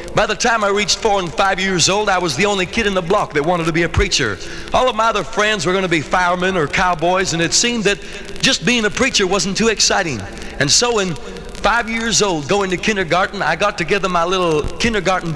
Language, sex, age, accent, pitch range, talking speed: English, male, 60-79, American, 175-210 Hz, 240 wpm